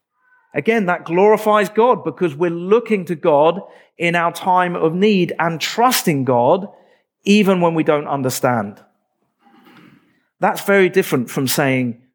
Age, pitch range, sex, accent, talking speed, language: 40-59, 135-180 Hz, male, British, 135 wpm, English